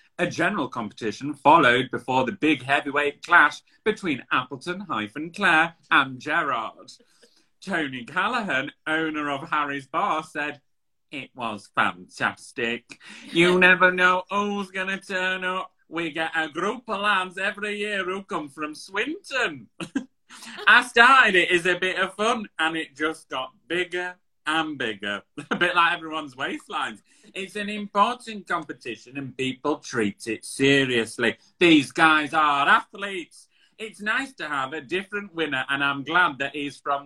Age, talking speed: 30-49, 145 wpm